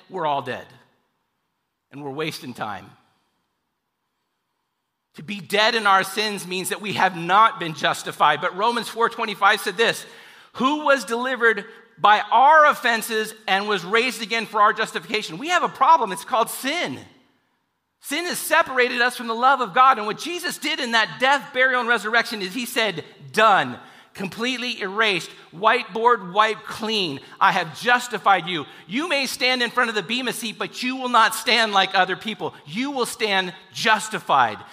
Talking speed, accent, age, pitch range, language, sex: 170 wpm, American, 40-59, 200-270 Hz, English, male